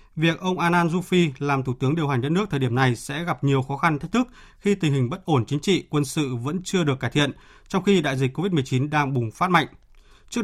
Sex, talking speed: male, 260 wpm